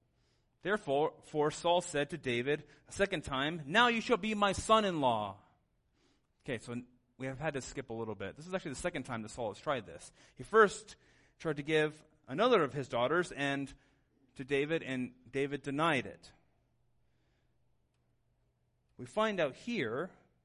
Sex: male